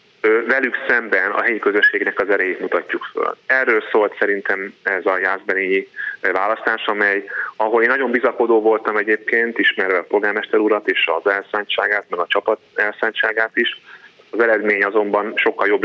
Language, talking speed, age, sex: Hungarian, 150 wpm, 30-49, male